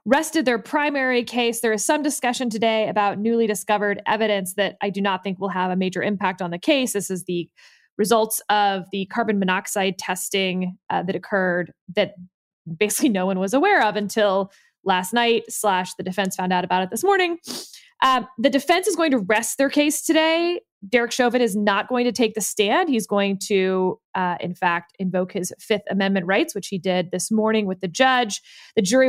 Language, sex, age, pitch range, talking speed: English, female, 20-39, 195-255 Hz, 200 wpm